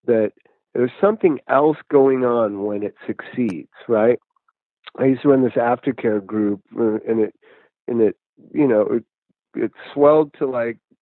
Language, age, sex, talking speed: English, 50-69, male, 150 wpm